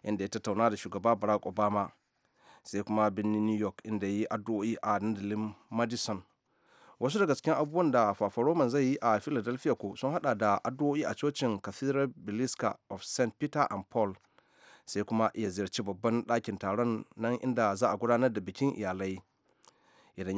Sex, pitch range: male, 100-120 Hz